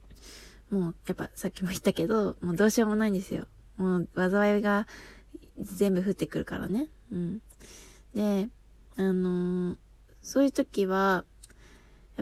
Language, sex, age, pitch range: Japanese, female, 20-39, 180-225 Hz